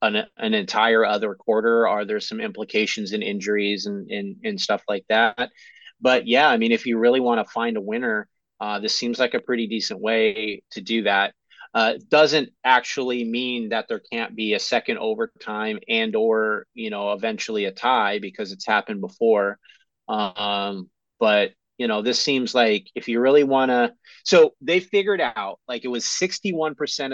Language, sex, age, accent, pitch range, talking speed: English, male, 30-49, American, 115-175 Hz, 180 wpm